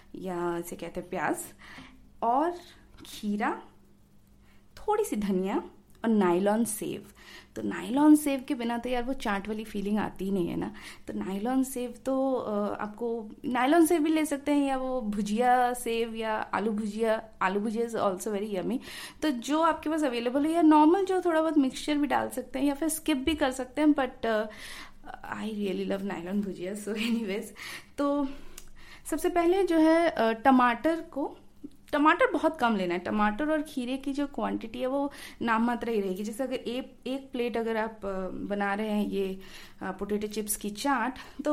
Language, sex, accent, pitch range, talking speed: Hindi, female, native, 210-280 Hz, 180 wpm